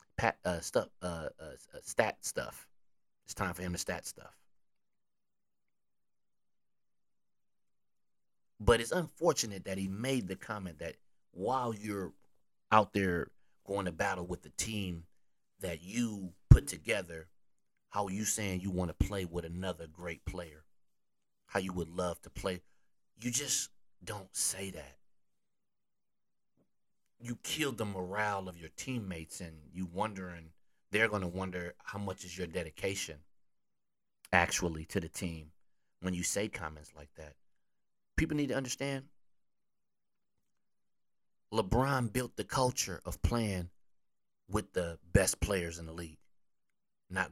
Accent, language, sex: American, English, male